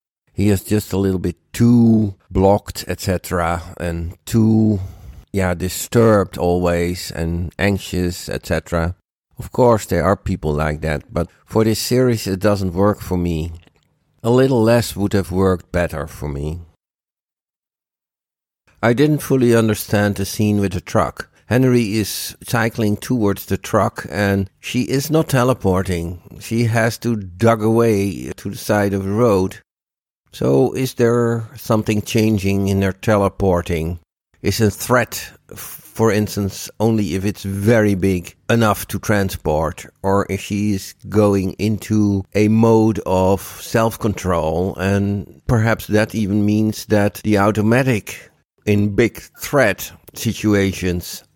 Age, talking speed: 60-79, 135 wpm